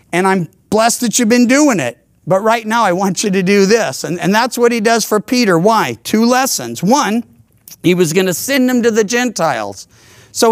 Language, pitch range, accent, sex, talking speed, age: English, 160-240 Hz, American, male, 220 wpm, 50-69